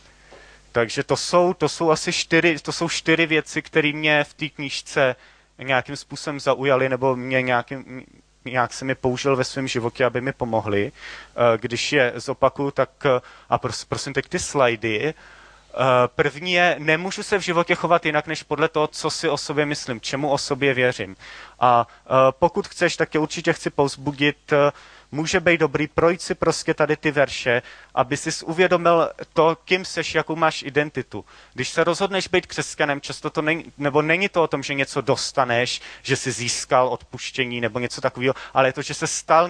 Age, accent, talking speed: 30-49, native, 180 wpm